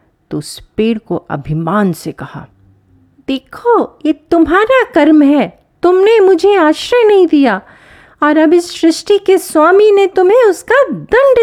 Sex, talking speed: female, 140 wpm